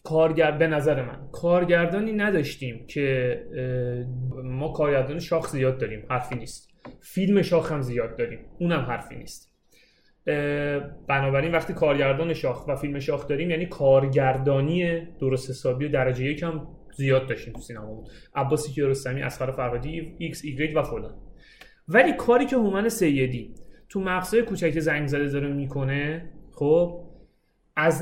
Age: 30-49